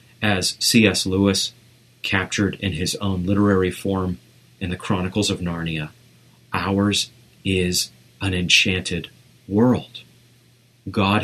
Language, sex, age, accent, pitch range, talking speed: English, male, 30-49, American, 95-120 Hz, 105 wpm